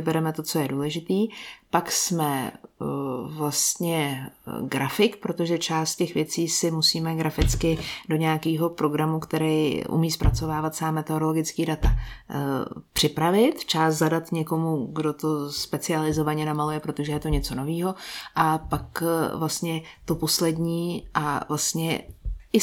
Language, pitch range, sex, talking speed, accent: Czech, 150-165 Hz, female, 135 wpm, native